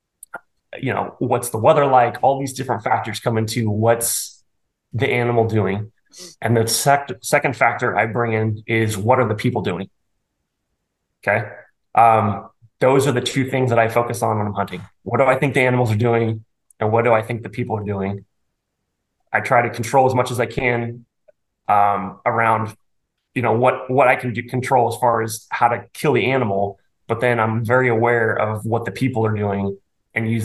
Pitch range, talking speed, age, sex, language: 110-125 Hz, 195 wpm, 20-39, male, English